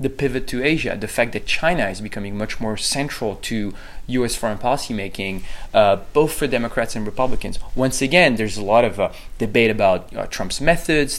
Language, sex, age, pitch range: English, male, 20-39, 105-130 Hz